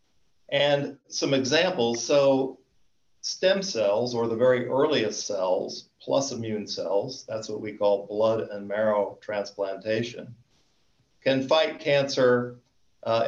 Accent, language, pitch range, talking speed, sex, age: American, English, 110-130 Hz, 115 wpm, male, 50-69